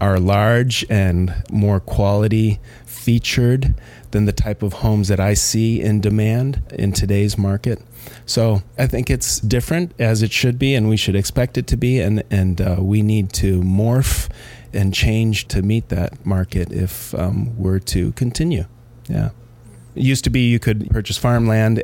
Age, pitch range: 30-49, 95-115 Hz